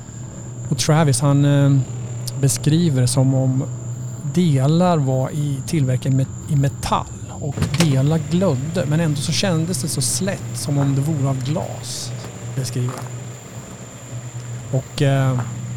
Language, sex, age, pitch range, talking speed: Swedish, male, 30-49, 125-155 Hz, 115 wpm